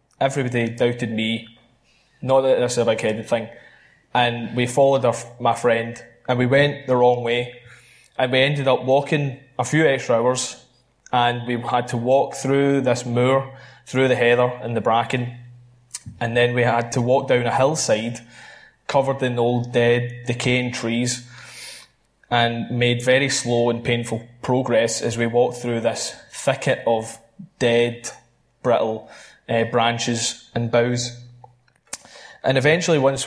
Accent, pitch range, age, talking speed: British, 115-125 Hz, 20-39, 150 wpm